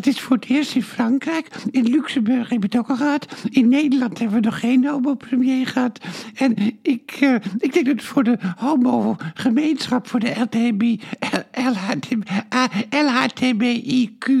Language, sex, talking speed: Dutch, male, 145 wpm